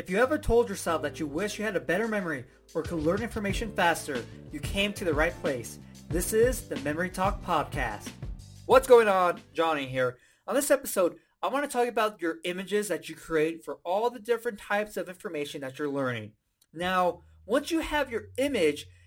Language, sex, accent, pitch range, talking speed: English, male, American, 170-240 Hz, 200 wpm